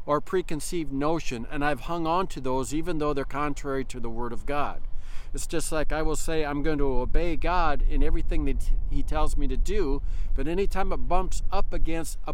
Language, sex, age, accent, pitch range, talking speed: English, male, 50-69, American, 130-170 Hz, 215 wpm